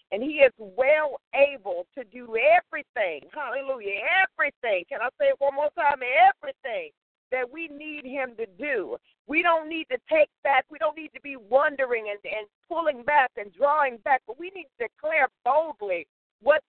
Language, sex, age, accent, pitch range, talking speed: English, female, 50-69, American, 270-345 Hz, 180 wpm